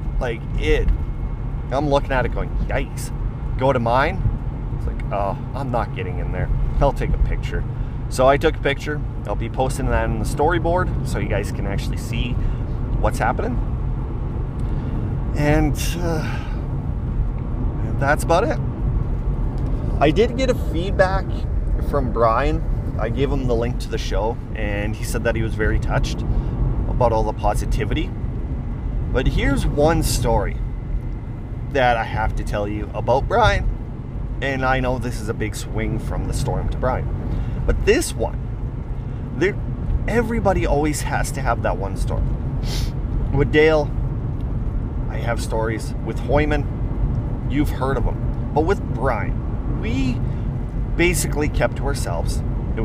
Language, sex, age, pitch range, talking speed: English, male, 30-49, 115-130 Hz, 150 wpm